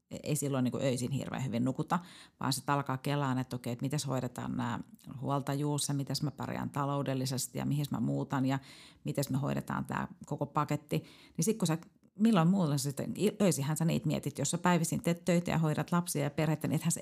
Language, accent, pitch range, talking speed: Finnish, native, 130-170 Hz, 200 wpm